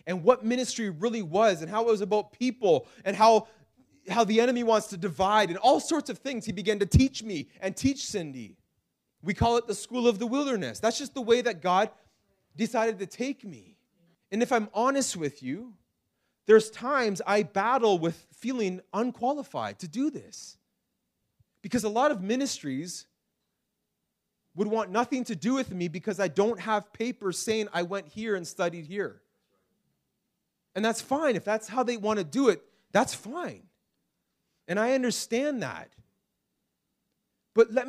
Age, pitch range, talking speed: 30-49, 190-245 Hz, 175 wpm